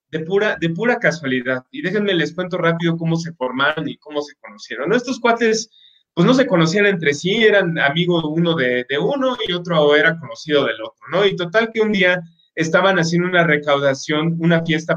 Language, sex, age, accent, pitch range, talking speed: Spanish, male, 30-49, Mexican, 145-185 Hz, 200 wpm